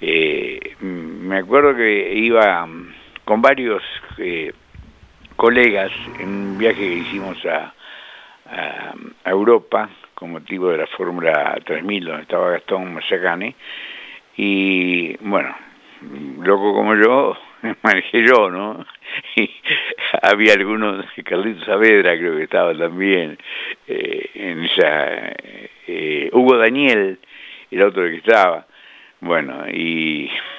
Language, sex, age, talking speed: Spanish, male, 60-79, 105 wpm